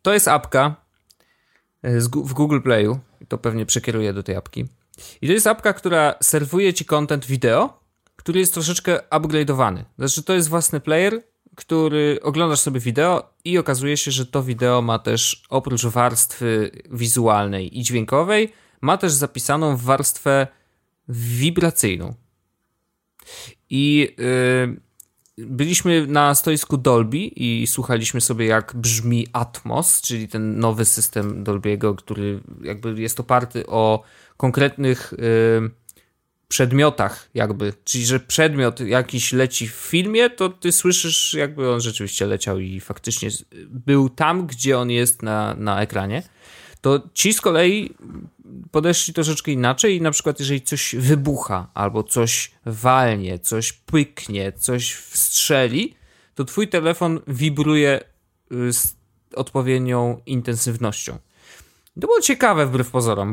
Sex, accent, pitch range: male, native, 115-150 Hz